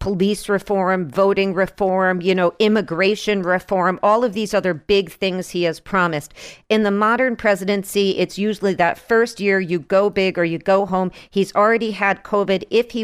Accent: American